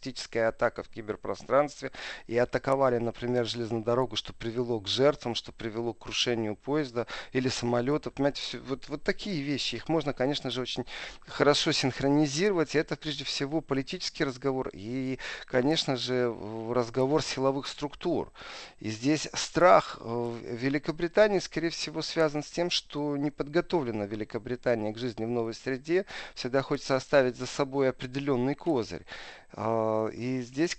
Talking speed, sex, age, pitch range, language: 135 wpm, male, 40-59, 115-145 Hz, Russian